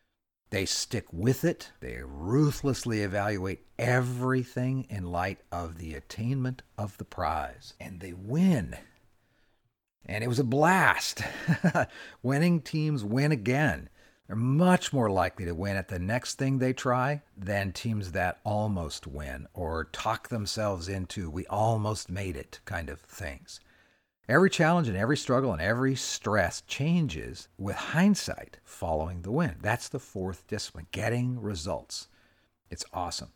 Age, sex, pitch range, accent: 50-69, male, 95-130 Hz, American